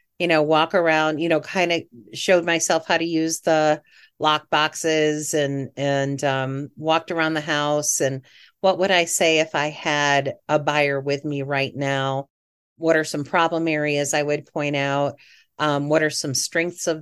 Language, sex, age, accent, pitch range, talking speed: English, female, 40-59, American, 145-180 Hz, 185 wpm